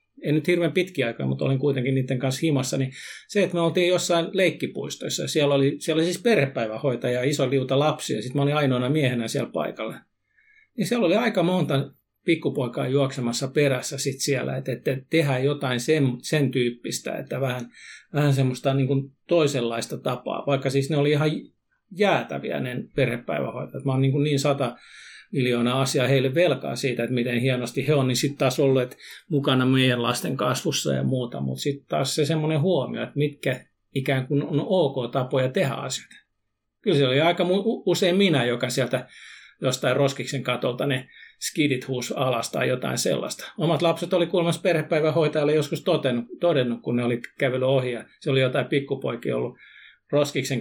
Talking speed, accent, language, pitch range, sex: 170 wpm, native, Finnish, 130-155 Hz, male